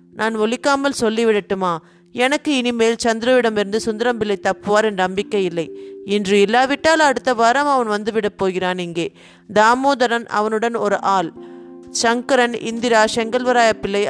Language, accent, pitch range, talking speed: Tamil, native, 195-235 Hz, 115 wpm